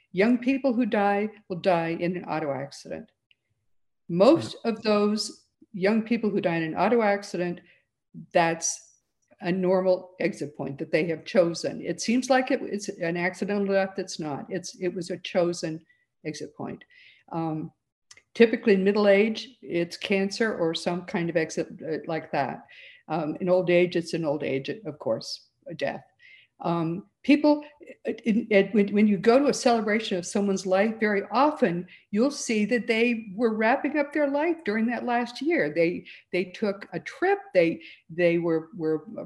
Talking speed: 170 wpm